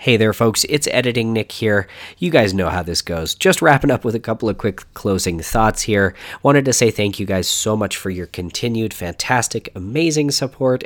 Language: English